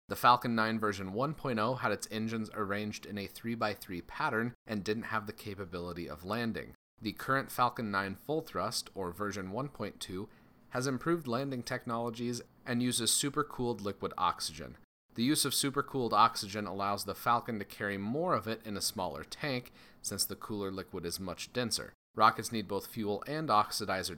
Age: 30-49